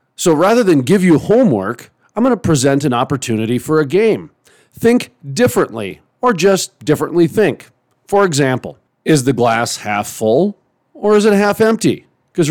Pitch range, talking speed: 125-170 Hz, 165 wpm